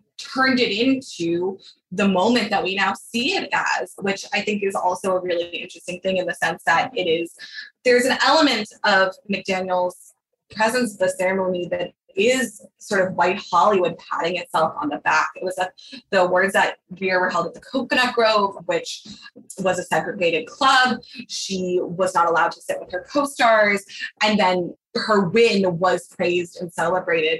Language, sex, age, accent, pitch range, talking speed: English, female, 20-39, American, 180-250 Hz, 175 wpm